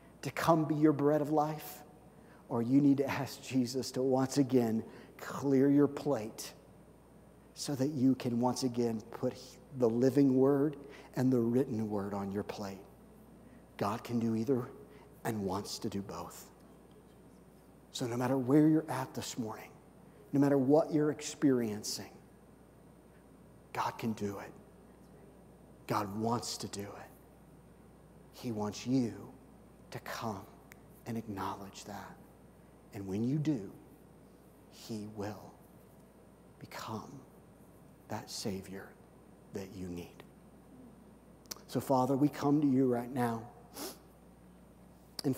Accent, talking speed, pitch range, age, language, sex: American, 125 wpm, 115-140 Hz, 50-69, English, male